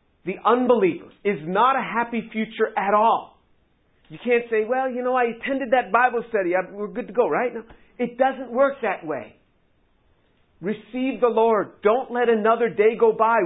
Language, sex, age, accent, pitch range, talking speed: English, male, 50-69, American, 205-255 Hz, 180 wpm